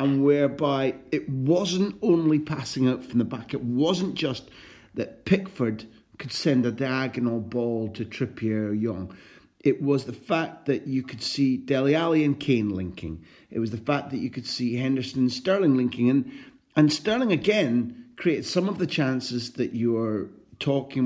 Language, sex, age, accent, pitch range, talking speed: English, male, 40-59, British, 110-145 Hz, 175 wpm